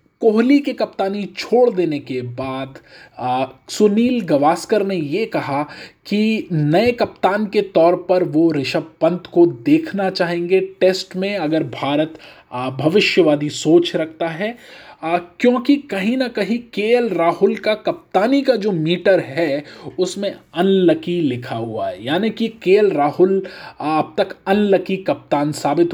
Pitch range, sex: 145-200 Hz, male